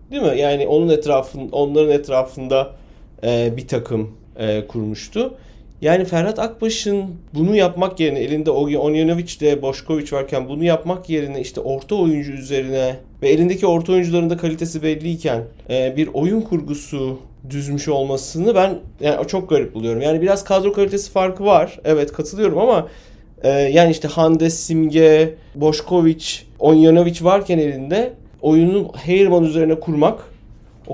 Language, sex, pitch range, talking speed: Turkish, male, 135-170 Hz, 130 wpm